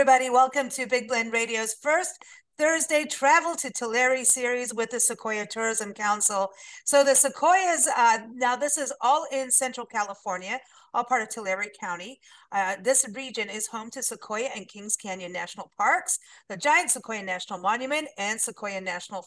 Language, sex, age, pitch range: English, female, 50-69, 200-265 Hz